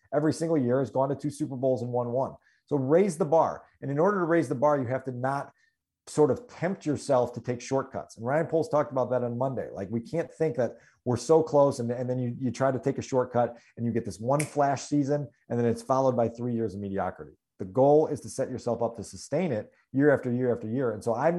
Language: English